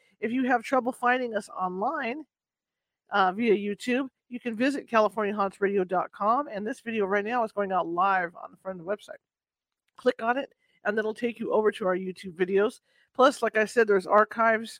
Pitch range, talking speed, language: 200-250 Hz, 190 wpm, English